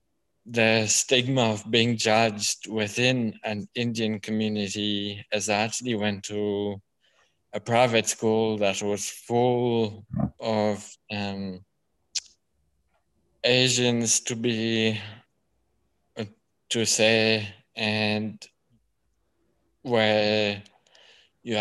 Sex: male